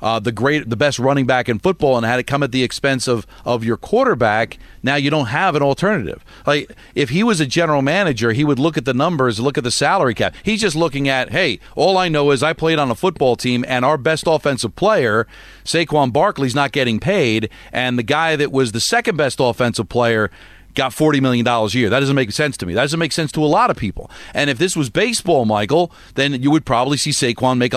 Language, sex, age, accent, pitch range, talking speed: English, male, 40-59, American, 125-165 Hz, 245 wpm